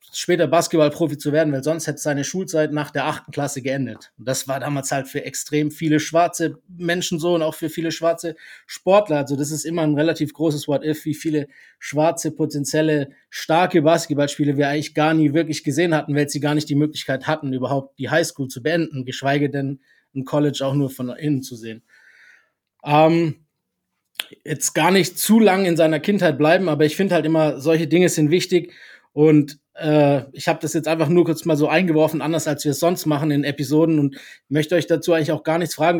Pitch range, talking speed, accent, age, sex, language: 150-175 Hz, 200 wpm, German, 20-39, male, German